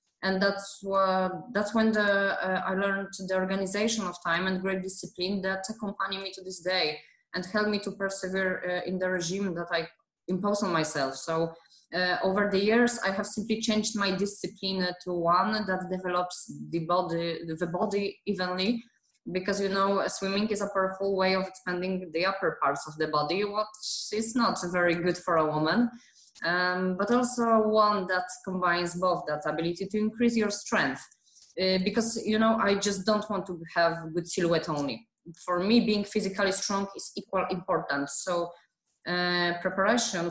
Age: 20-39